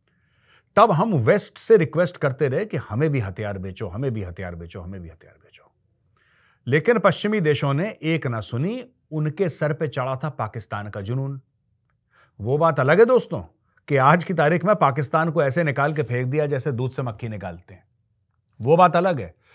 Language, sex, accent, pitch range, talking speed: Hindi, male, native, 110-165 Hz, 190 wpm